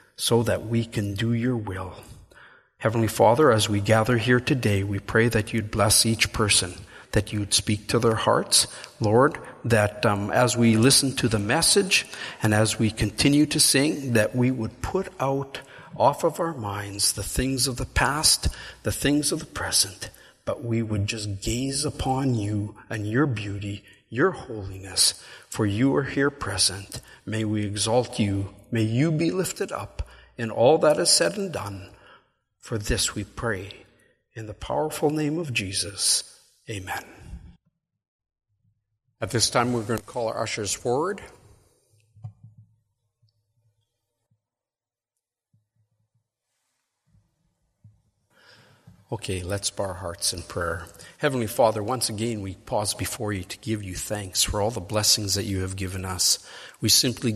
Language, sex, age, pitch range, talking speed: English, male, 50-69, 105-120 Hz, 150 wpm